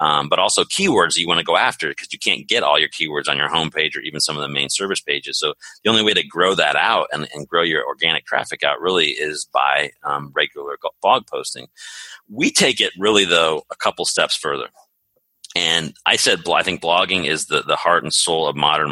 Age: 30-49